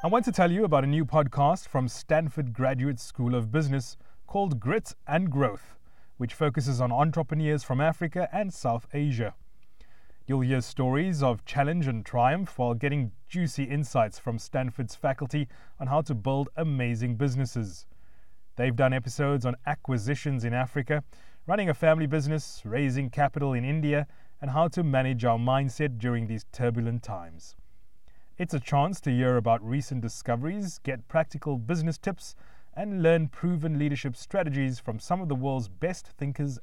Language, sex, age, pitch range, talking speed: English, male, 30-49, 120-155 Hz, 160 wpm